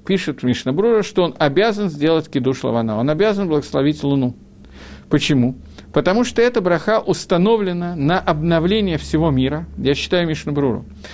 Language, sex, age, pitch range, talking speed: Russian, male, 50-69, 130-200 Hz, 135 wpm